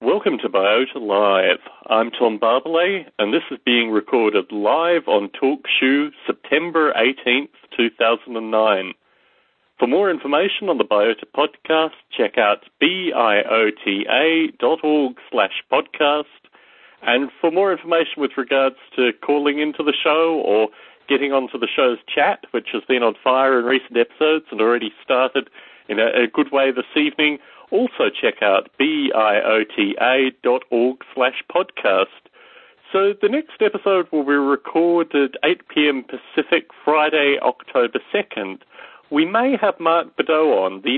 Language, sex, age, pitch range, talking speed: English, male, 40-59, 125-160 Hz, 140 wpm